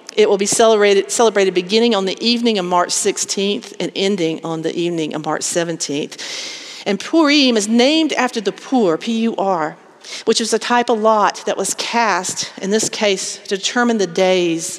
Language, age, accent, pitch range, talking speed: English, 40-59, American, 180-245 Hz, 180 wpm